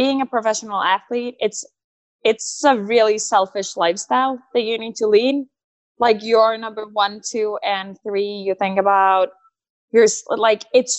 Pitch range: 200-240 Hz